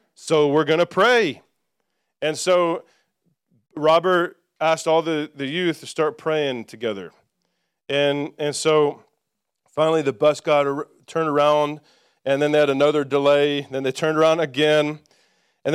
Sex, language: male, English